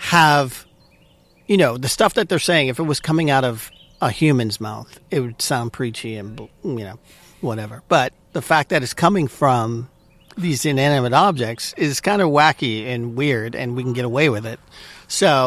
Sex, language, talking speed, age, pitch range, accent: male, English, 190 wpm, 50-69, 110-145 Hz, American